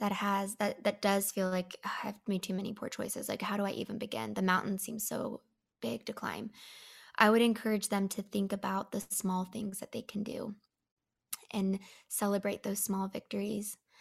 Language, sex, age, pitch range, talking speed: English, female, 20-39, 185-210 Hz, 195 wpm